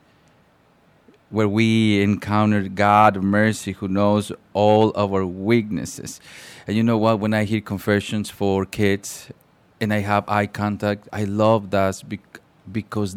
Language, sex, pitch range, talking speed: English, male, 100-115 Hz, 140 wpm